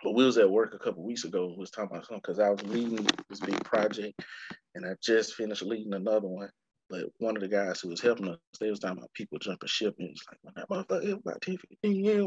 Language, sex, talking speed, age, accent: English, male, 250 wpm, 20-39, American